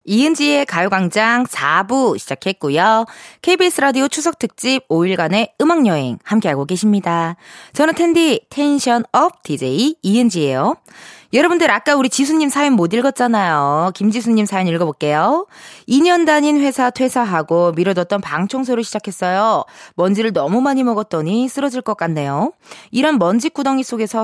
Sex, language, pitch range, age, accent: female, Korean, 180-265 Hz, 20-39, native